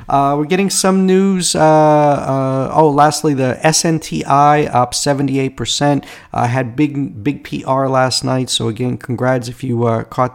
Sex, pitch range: male, 125-150 Hz